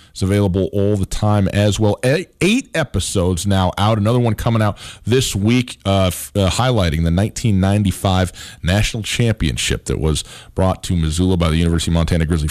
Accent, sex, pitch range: American, male, 80-110 Hz